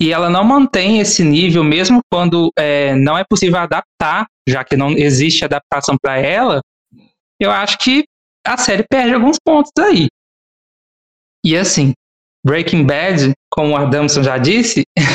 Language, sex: Portuguese, male